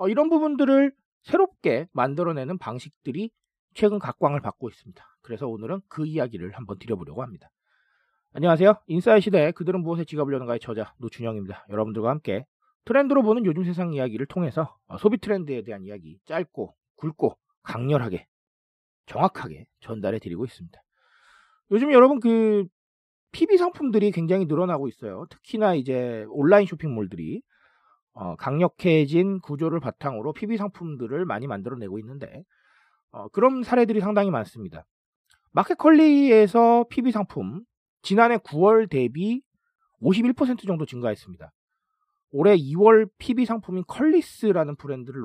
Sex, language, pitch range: male, Korean, 135-225 Hz